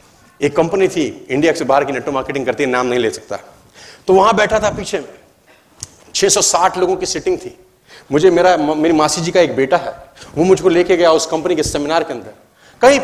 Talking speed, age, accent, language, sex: 215 wpm, 40-59, native, Hindi, male